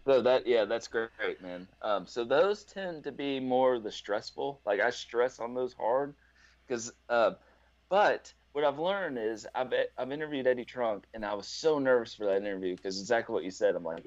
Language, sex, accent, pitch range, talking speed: English, male, American, 95-125 Hz, 205 wpm